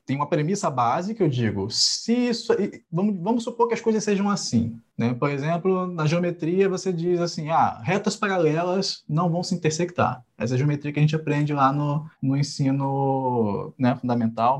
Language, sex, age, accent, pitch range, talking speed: Portuguese, male, 20-39, Brazilian, 145-200 Hz, 185 wpm